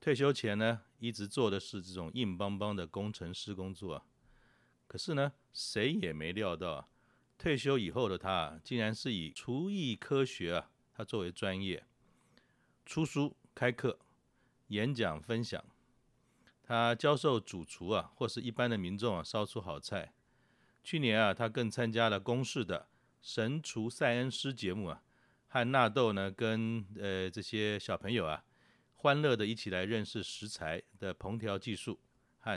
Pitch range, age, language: 95-125 Hz, 40-59, Chinese